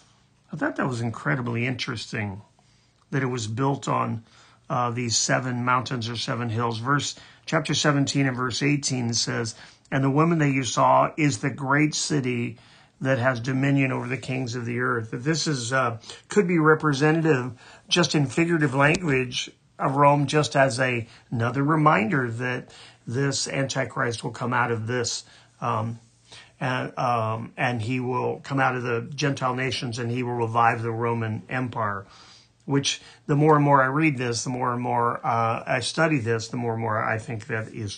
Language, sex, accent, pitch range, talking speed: English, male, American, 120-145 Hz, 180 wpm